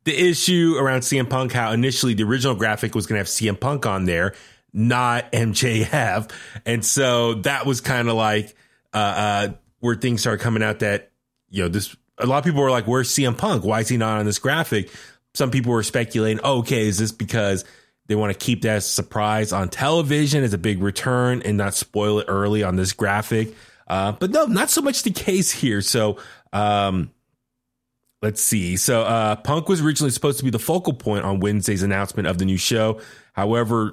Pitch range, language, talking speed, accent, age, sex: 100-125 Hz, English, 205 wpm, American, 20-39, male